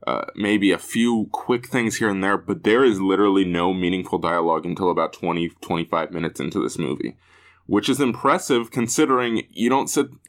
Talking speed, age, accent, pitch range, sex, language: 180 wpm, 20-39, American, 90-115 Hz, male, English